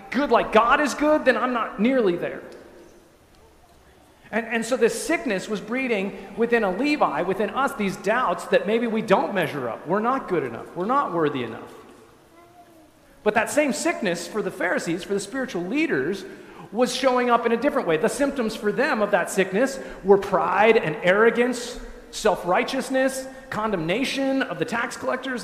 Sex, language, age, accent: male, English, 40-59, American